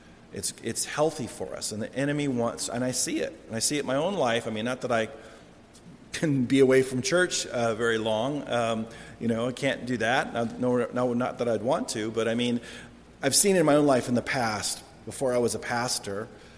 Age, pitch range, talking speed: 40-59, 110-130 Hz, 240 wpm